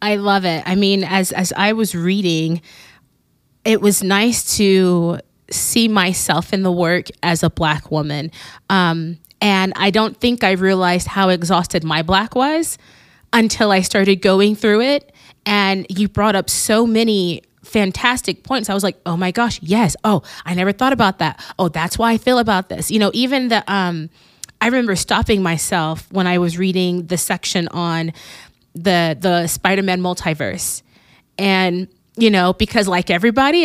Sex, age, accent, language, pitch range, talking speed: female, 20-39, American, English, 175-220 Hz, 170 wpm